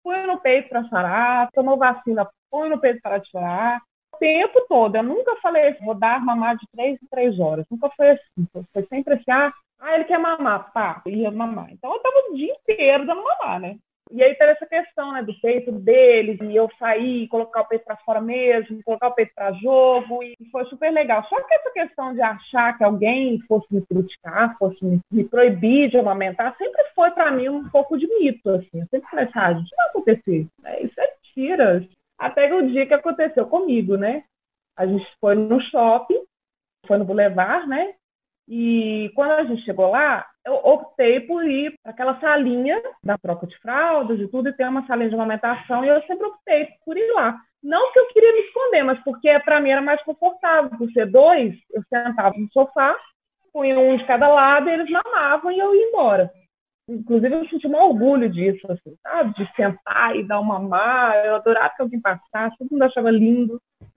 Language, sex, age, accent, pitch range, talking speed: Portuguese, female, 20-39, Brazilian, 220-300 Hz, 205 wpm